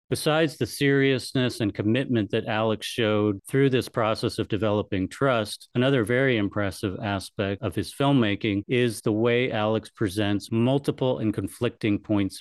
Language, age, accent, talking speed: English, 40-59, American, 145 wpm